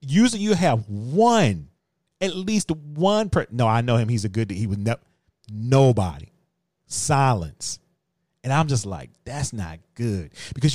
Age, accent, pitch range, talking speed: 40-59, American, 110-140 Hz, 155 wpm